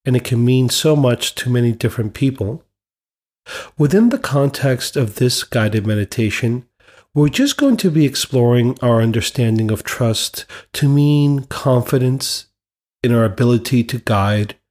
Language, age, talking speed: English, 40-59, 145 wpm